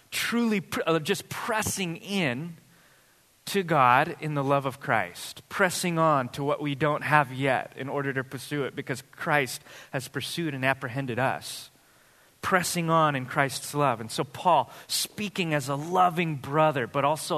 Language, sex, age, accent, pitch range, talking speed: English, male, 20-39, American, 140-180 Hz, 160 wpm